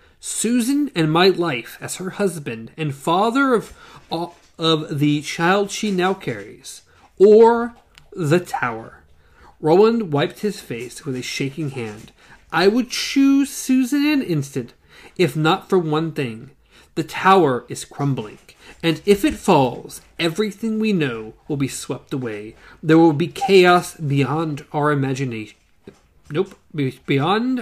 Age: 40-59